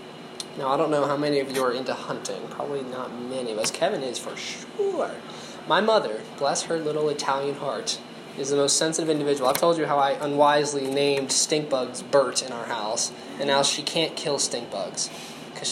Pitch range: 135-155 Hz